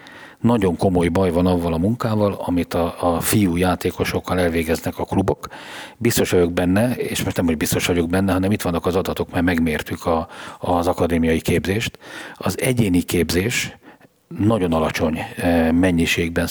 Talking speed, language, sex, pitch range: 155 wpm, Hungarian, male, 85-110 Hz